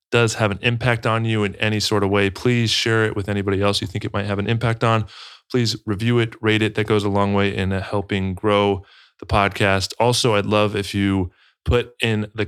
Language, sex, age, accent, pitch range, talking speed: English, male, 20-39, American, 95-110 Hz, 230 wpm